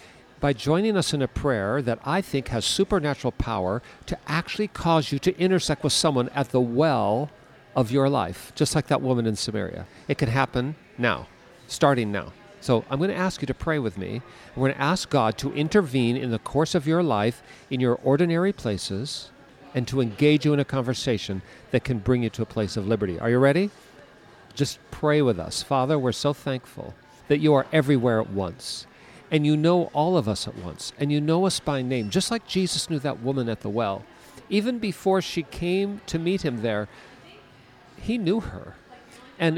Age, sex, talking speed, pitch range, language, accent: 50-69, male, 200 wpm, 125-165 Hz, English, American